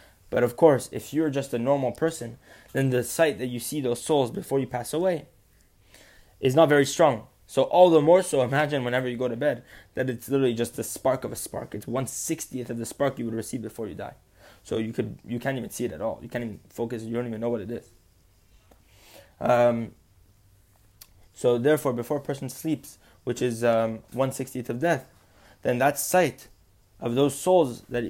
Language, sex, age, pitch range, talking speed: English, male, 20-39, 115-145 Hz, 210 wpm